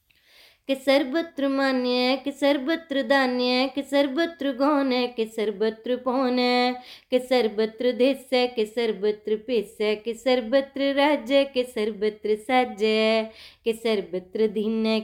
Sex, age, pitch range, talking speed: female, 20-39, 250-330 Hz, 130 wpm